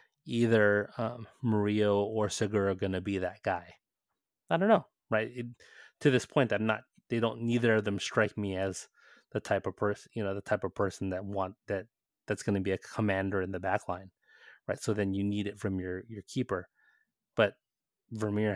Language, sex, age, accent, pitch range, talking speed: English, male, 20-39, American, 95-105 Hz, 205 wpm